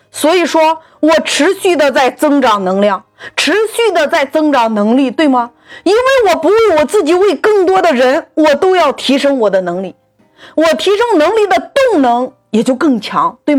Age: 30-49